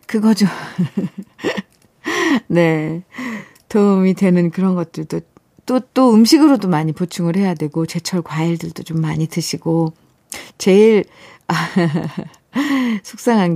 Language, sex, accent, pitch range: Korean, female, native, 160-215 Hz